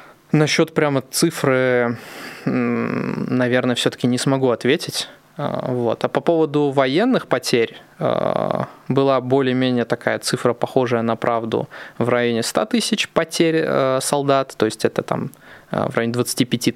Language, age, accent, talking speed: Russian, 20-39, native, 120 wpm